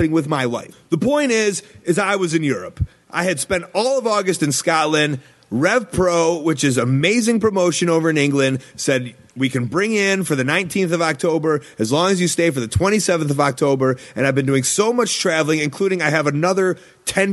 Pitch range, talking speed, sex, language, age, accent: 140-190 Hz, 210 wpm, male, English, 30-49, American